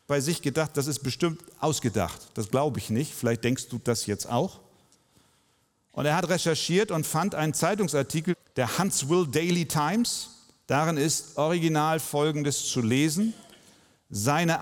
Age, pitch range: 40-59, 140-190 Hz